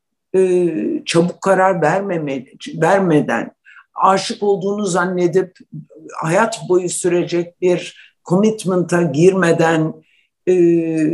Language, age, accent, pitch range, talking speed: Turkish, 60-79, native, 155-200 Hz, 75 wpm